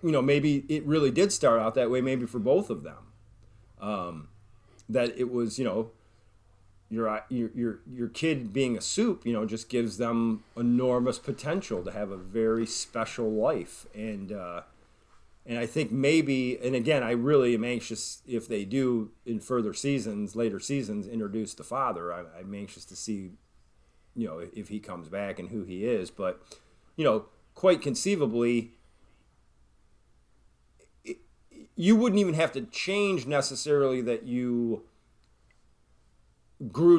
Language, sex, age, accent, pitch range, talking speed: English, male, 30-49, American, 105-135 Hz, 150 wpm